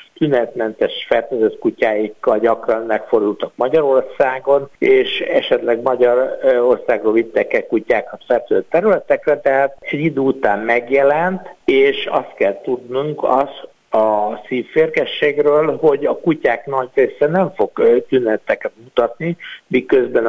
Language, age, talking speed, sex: Hungarian, 60-79, 110 wpm, male